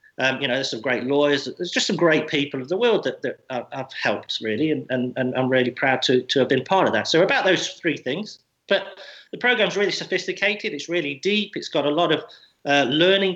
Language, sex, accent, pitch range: English, male, British, 130-170 Hz